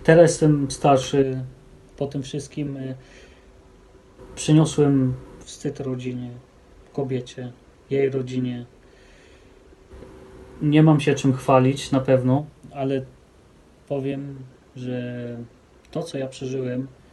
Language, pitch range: Polish, 100-135 Hz